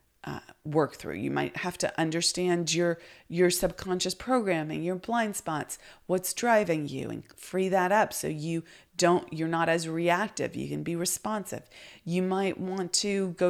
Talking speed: 170 wpm